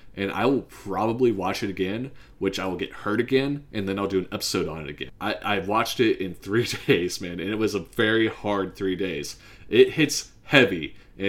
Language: English